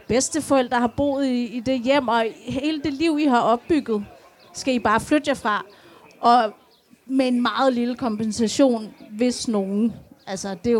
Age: 30-49